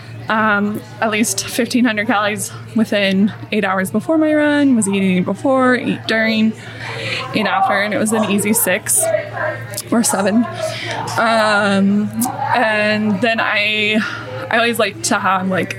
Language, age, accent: English, 20-39, American